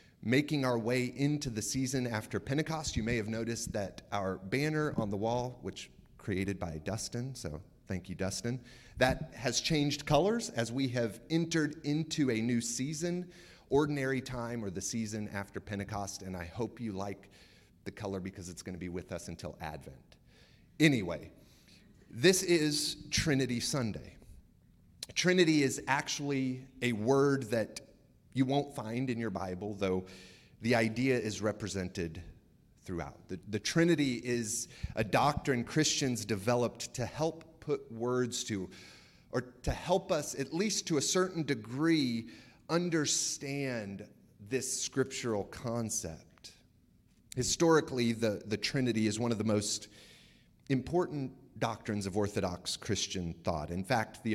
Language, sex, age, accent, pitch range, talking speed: English, male, 30-49, American, 100-140 Hz, 140 wpm